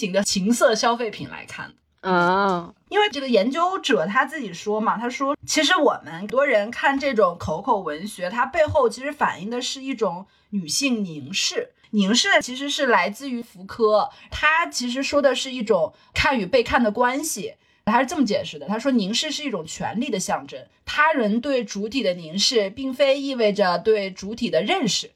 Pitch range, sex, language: 200-275 Hz, female, Chinese